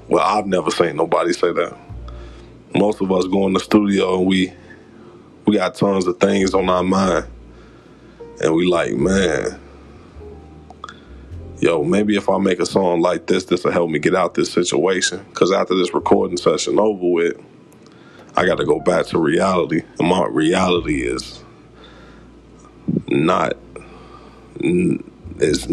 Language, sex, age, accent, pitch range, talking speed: English, male, 20-39, American, 85-100 Hz, 150 wpm